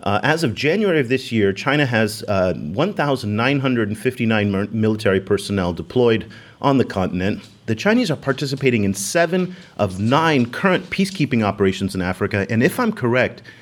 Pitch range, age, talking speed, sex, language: 100-135 Hz, 30-49, 150 wpm, male, English